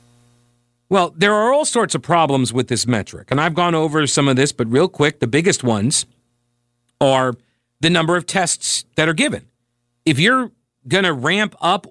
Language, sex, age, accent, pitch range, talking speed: English, male, 40-59, American, 120-175 Hz, 185 wpm